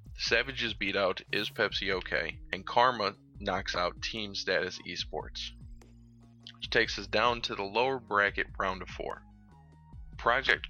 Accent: American